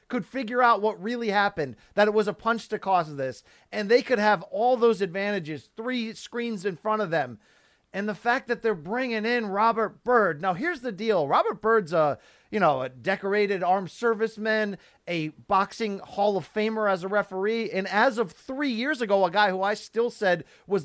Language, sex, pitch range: English, male, 180-225 Hz